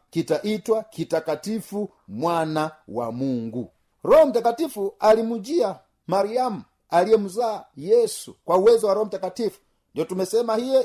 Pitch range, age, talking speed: 165-210 Hz, 50-69, 105 wpm